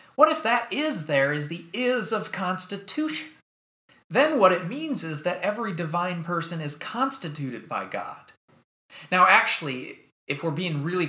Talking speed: 155 wpm